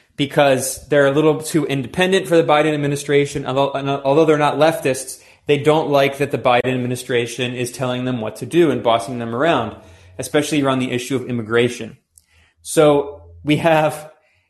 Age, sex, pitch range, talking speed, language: 20-39, male, 130-160 Hz, 170 wpm, English